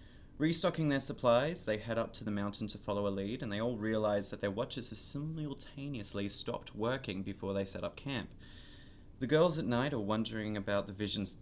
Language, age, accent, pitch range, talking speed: English, 20-39, Australian, 100-130 Hz, 205 wpm